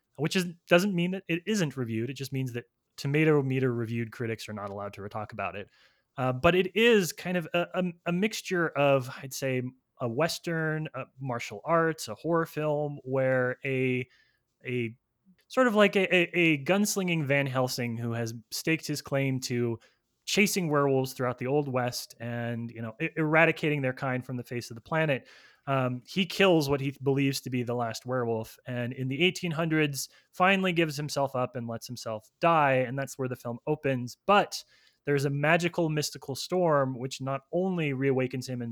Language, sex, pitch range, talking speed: English, male, 125-155 Hz, 190 wpm